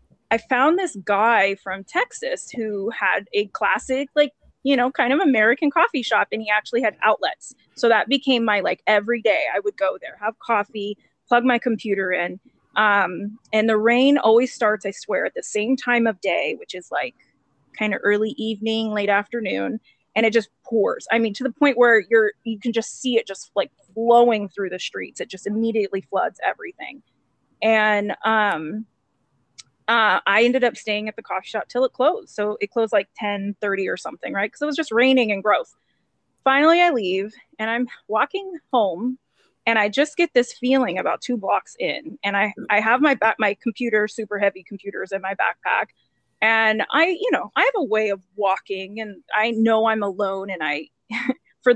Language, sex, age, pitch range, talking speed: English, female, 20-39, 205-260 Hz, 195 wpm